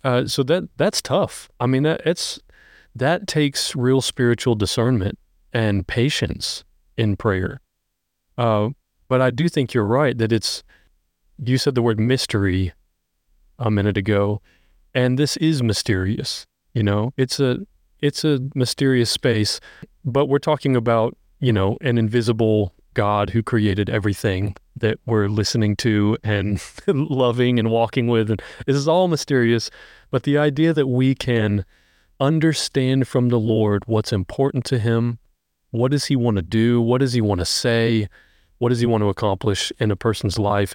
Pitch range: 105-130 Hz